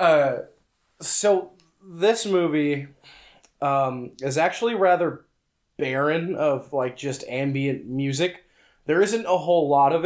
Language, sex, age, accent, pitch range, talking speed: English, male, 20-39, American, 130-155 Hz, 120 wpm